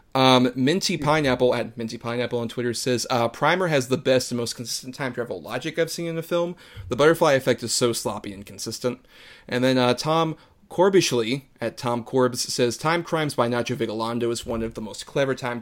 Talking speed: 210 wpm